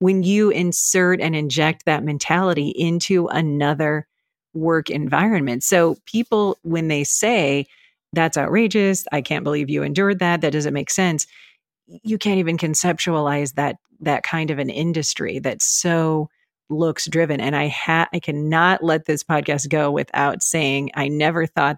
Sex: female